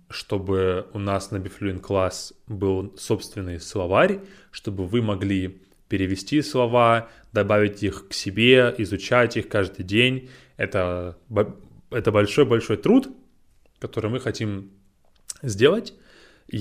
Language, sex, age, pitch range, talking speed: English, male, 20-39, 100-125 Hz, 110 wpm